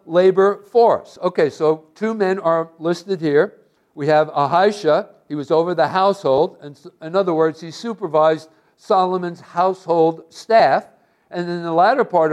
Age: 60-79